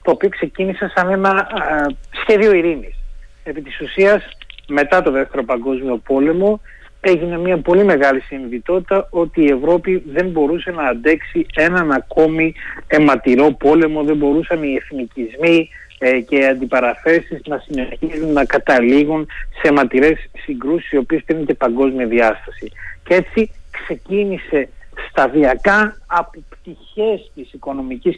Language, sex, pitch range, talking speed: Greek, male, 135-175 Hz, 125 wpm